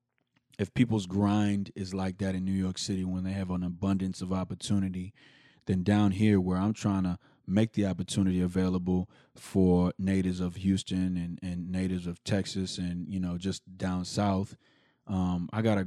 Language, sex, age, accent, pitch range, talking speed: English, male, 20-39, American, 90-100 Hz, 175 wpm